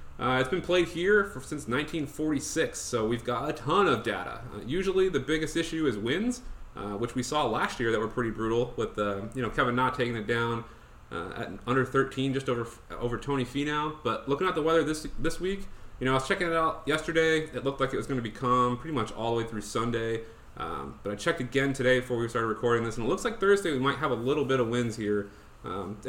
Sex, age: male, 30-49